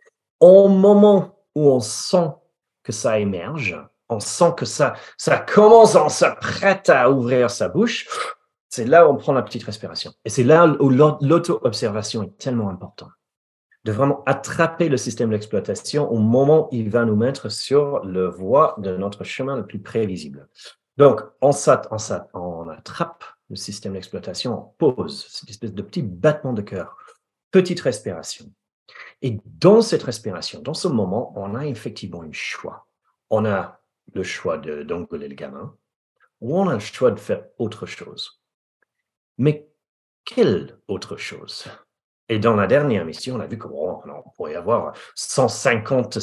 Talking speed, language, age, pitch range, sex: 155 wpm, French, 40-59, 105-150 Hz, male